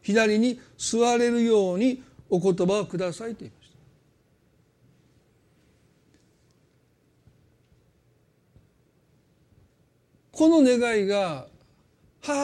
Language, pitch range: Japanese, 175-235 Hz